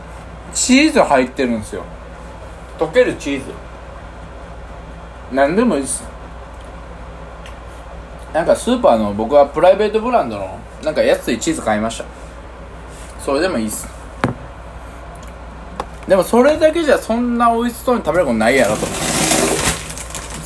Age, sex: 20-39, male